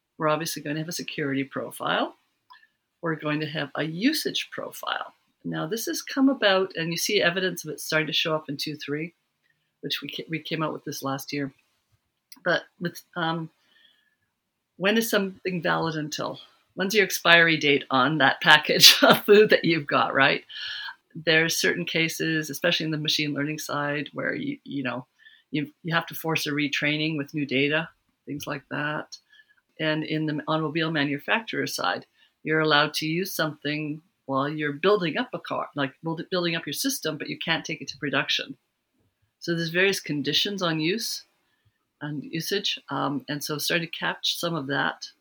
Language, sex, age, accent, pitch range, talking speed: English, female, 50-69, American, 145-175 Hz, 175 wpm